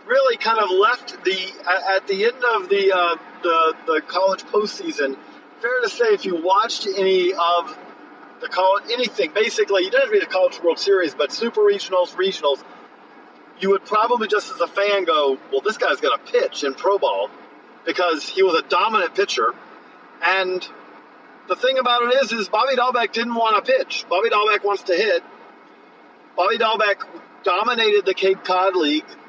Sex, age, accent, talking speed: male, 40-59, American, 180 wpm